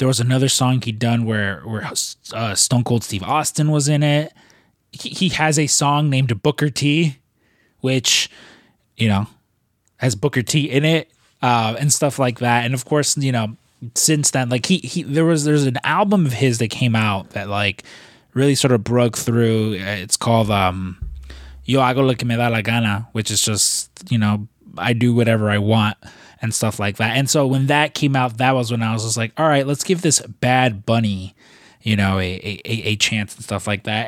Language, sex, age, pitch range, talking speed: English, male, 20-39, 105-135 Hz, 210 wpm